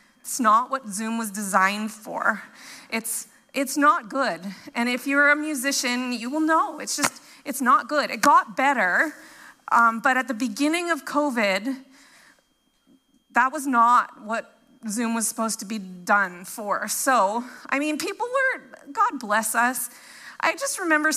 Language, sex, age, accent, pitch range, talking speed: English, female, 30-49, American, 235-295 Hz, 160 wpm